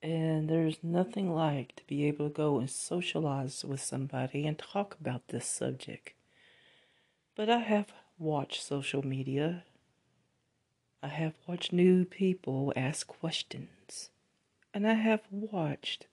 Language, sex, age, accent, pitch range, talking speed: English, female, 40-59, American, 135-175 Hz, 130 wpm